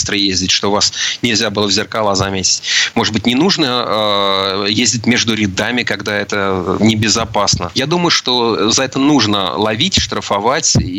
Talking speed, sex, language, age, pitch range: 145 wpm, male, Russian, 30-49, 100-120 Hz